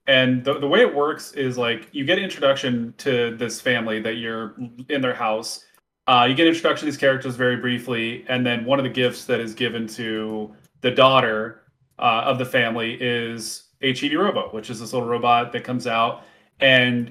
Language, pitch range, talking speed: English, 110-135 Hz, 205 wpm